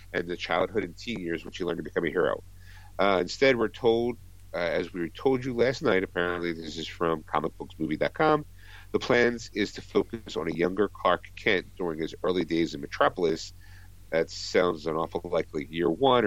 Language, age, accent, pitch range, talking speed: English, 50-69, American, 90-110 Hz, 190 wpm